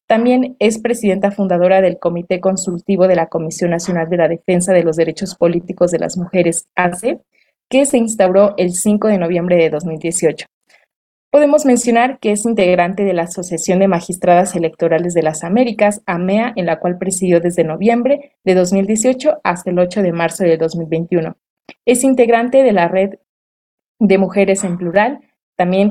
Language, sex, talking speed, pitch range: Spanish, female, 165 wpm, 175-215 Hz